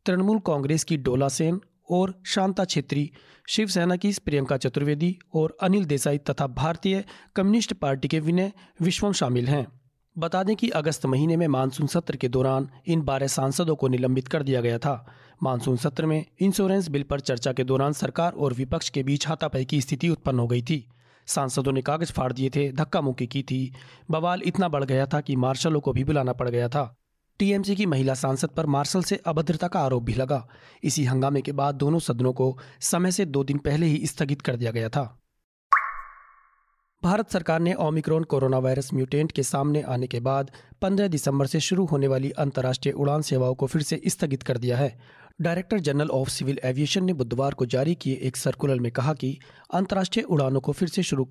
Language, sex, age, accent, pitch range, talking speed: Hindi, male, 40-59, native, 130-170 Hz, 195 wpm